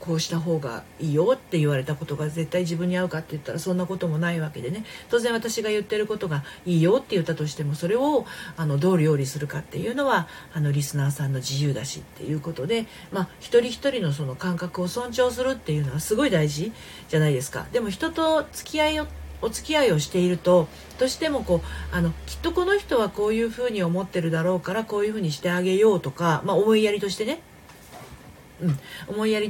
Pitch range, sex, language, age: 155-225 Hz, female, Japanese, 40-59